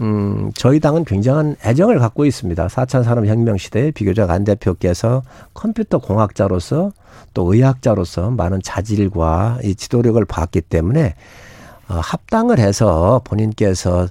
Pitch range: 100-140 Hz